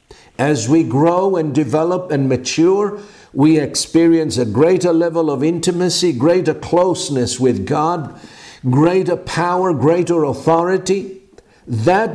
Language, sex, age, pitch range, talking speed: English, male, 60-79, 135-175 Hz, 115 wpm